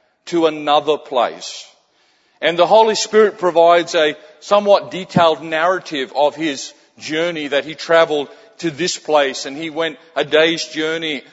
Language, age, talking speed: English, 50-69, 145 wpm